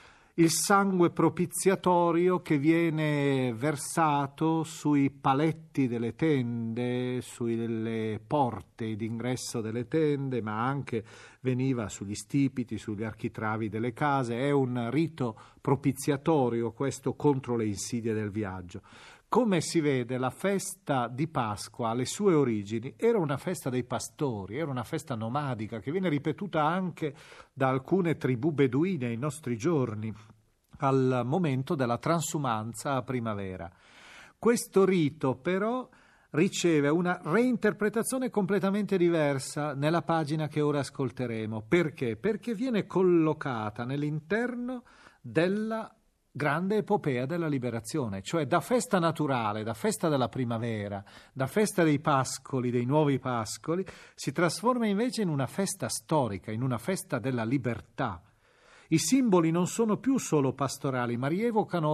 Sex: male